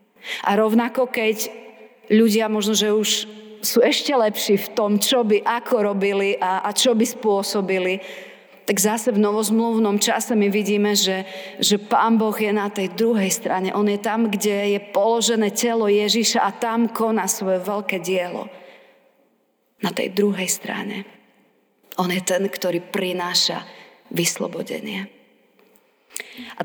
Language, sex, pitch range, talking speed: Slovak, female, 185-225 Hz, 140 wpm